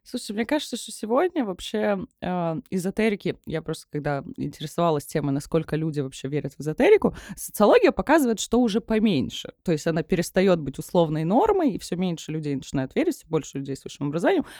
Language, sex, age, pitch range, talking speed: Russian, female, 20-39, 155-220 Hz, 175 wpm